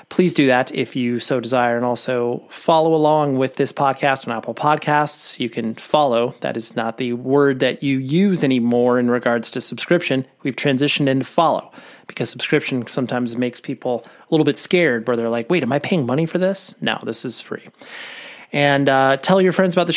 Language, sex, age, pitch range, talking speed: English, male, 30-49, 125-150 Hz, 200 wpm